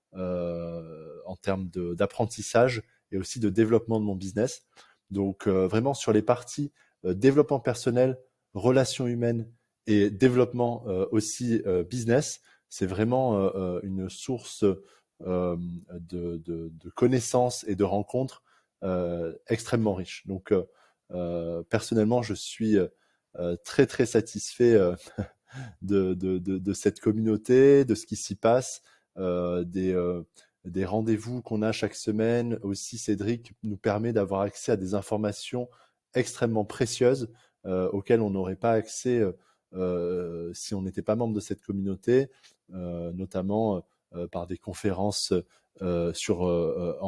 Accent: French